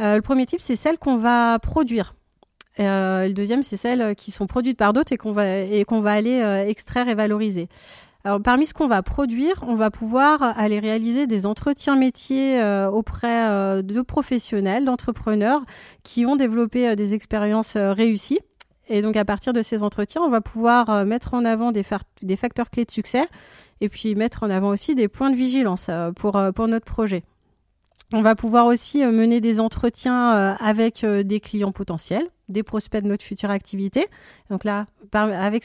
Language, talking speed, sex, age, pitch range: French, 195 wpm, female, 30-49, 205-245 Hz